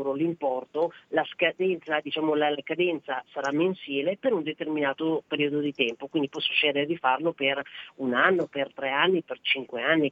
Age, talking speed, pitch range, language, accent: 40-59, 170 wpm, 145-180 Hz, Italian, native